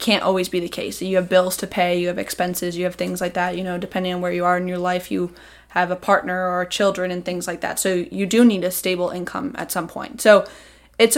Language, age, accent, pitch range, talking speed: English, 20-39, American, 180-200 Hz, 270 wpm